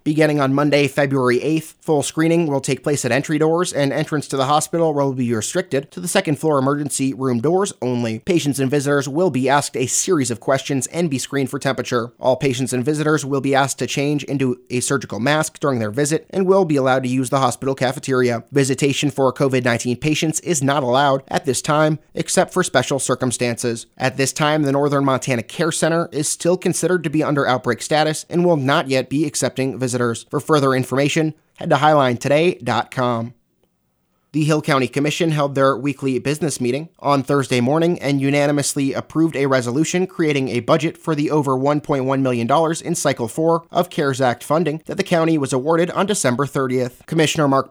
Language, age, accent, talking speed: English, 30-49, American, 195 wpm